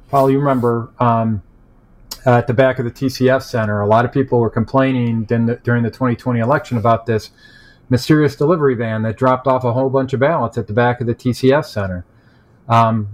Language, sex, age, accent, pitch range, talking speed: English, male, 40-59, American, 120-140 Hz, 195 wpm